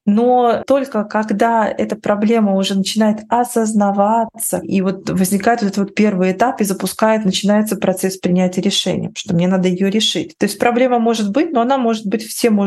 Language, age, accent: Russian, 20-39, native